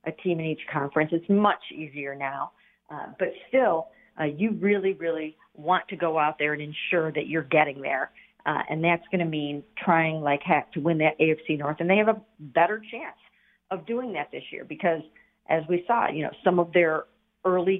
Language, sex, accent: English, female, American